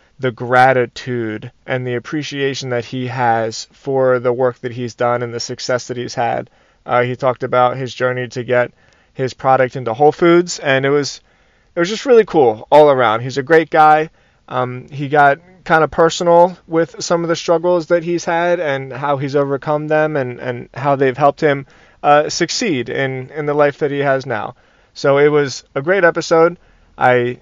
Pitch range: 125-160 Hz